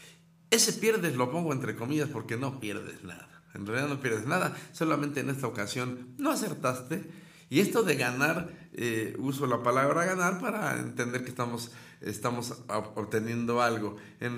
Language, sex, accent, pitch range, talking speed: Spanish, male, Mexican, 115-165 Hz, 160 wpm